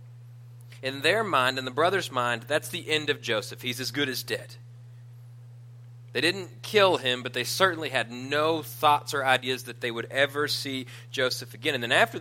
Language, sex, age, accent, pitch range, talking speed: English, male, 30-49, American, 120-135 Hz, 190 wpm